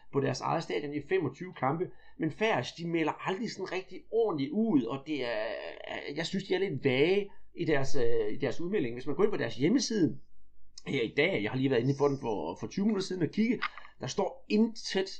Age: 40-59